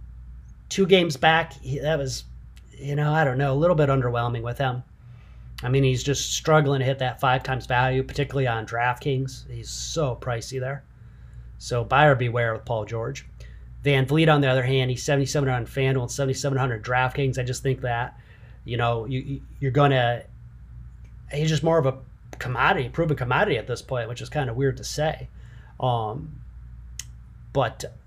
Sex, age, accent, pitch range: male, 30-49, American, 120-140 Hz